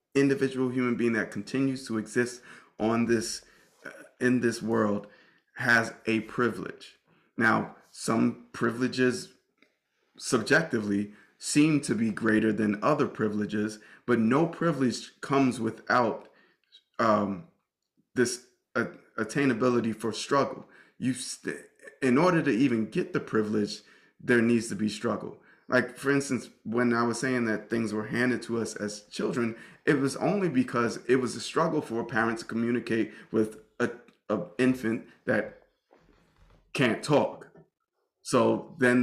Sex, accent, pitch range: male, American, 110-130 Hz